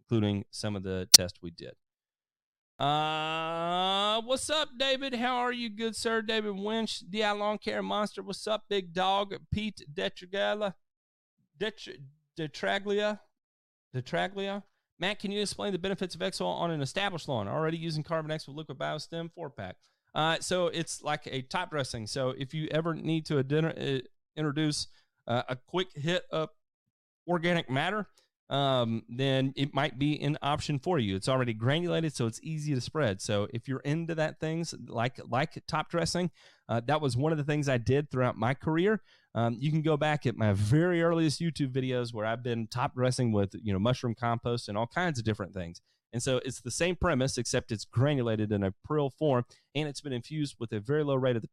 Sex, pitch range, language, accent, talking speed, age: male, 120-170 Hz, English, American, 190 wpm, 40-59